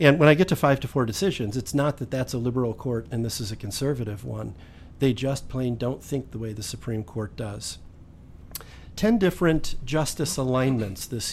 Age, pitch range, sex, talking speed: 50-69, 115-140 Hz, male, 200 wpm